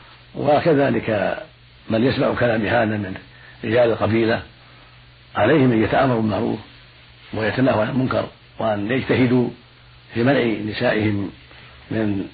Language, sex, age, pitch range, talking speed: Arabic, male, 60-79, 80-115 Hz, 100 wpm